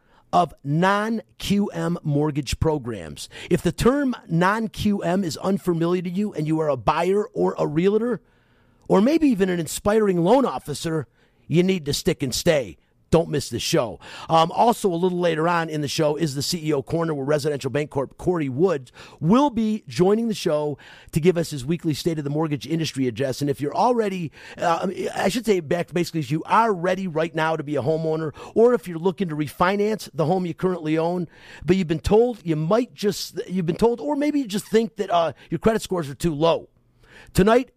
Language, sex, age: English, male, 40-59